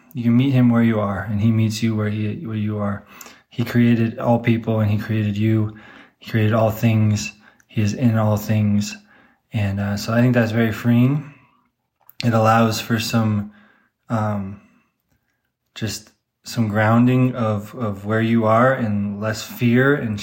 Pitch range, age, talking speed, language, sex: 105-120 Hz, 20-39, 170 wpm, English, male